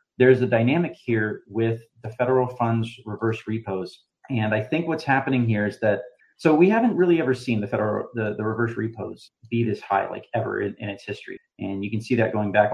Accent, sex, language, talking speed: American, male, English, 215 wpm